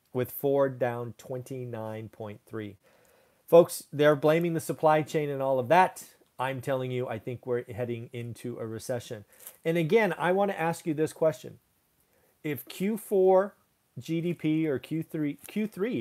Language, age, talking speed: English, 40-59, 150 wpm